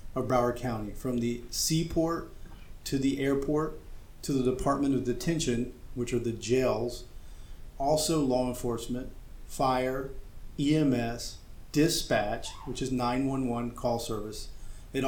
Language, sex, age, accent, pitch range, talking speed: English, male, 40-59, American, 120-140 Hz, 120 wpm